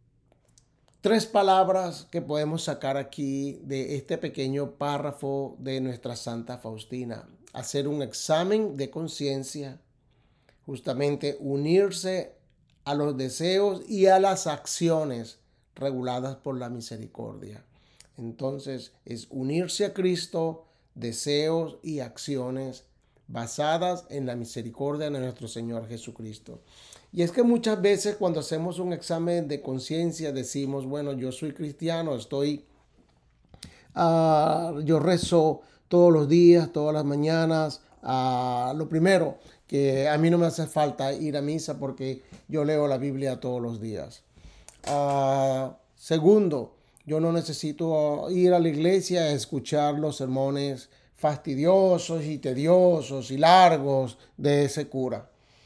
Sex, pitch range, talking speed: male, 130-165 Hz, 120 wpm